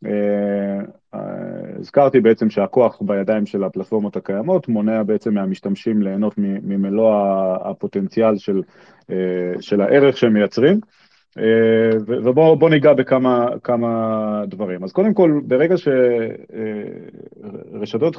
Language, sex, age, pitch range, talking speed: Hebrew, male, 30-49, 105-130 Hz, 100 wpm